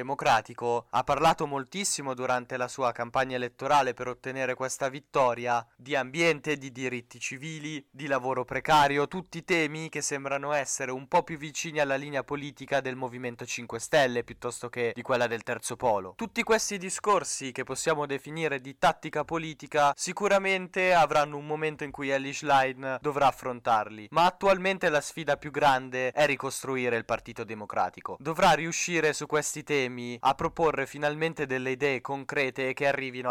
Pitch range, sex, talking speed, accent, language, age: 125-150 Hz, male, 155 wpm, native, Italian, 20-39